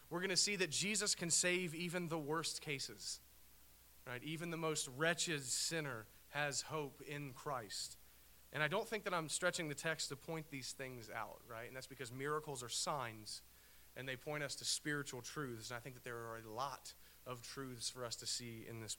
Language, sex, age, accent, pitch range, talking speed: English, male, 40-59, American, 115-155 Hz, 210 wpm